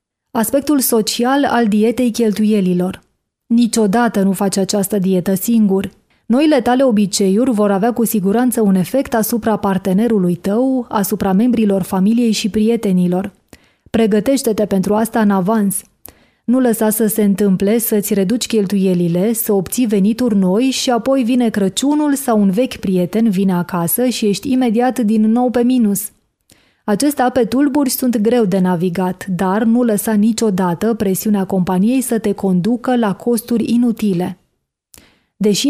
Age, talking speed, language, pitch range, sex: 20-39, 140 wpm, Hungarian, 195-235 Hz, female